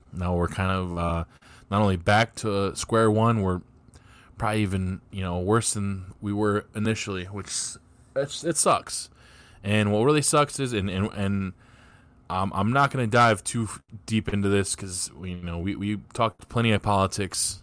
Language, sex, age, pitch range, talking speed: English, male, 20-39, 90-110 Hz, 175 wpm